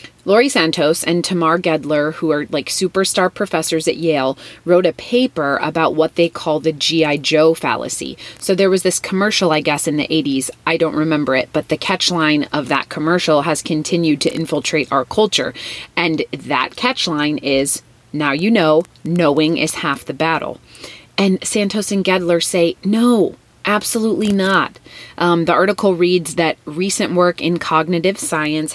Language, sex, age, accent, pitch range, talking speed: English, female, 30-49, American, 155-185 Hz, 170 wpm